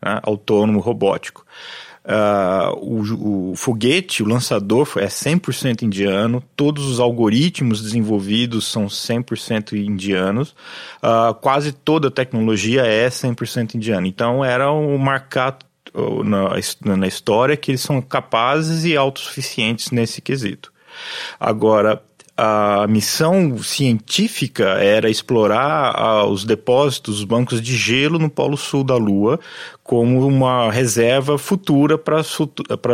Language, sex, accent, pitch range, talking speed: Portuguese, male, Brazilian, 110-135 Hz, 110 wpm